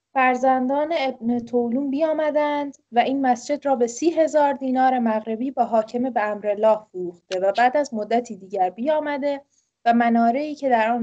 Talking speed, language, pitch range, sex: 165 wpm, English, 230-310 Hz, female